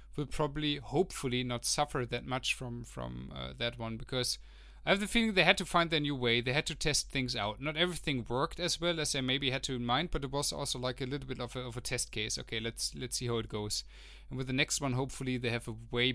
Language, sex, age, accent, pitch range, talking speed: English, male, 30-49, German, 115-150 Hz, 270 wpm